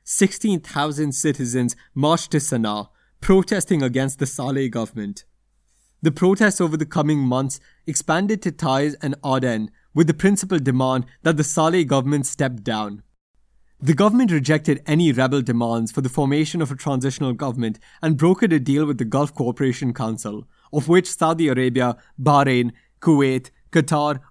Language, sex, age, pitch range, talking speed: English, male, 20-39, 125-165 Hz, 150 wpm